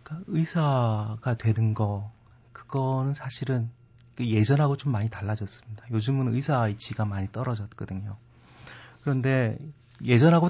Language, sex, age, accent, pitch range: Korean, male, 30-49, native, 110-130 Hz